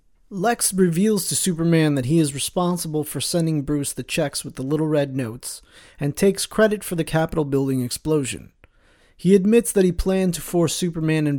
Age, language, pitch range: 30-49, English, 140-175 Hz